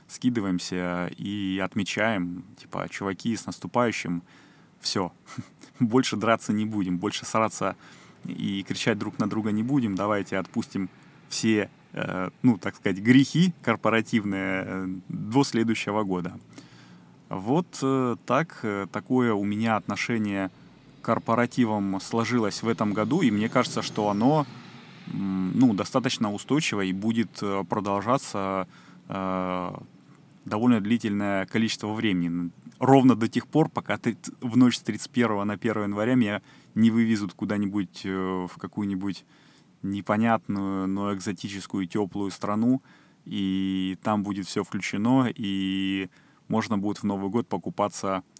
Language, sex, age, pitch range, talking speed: Russian, male, 20-39, 95-115 Hz, 125 wpm